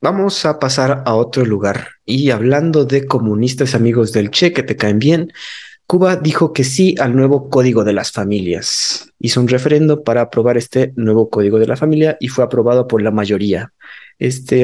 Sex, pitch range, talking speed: male, 115-150 Hz, 185 wpm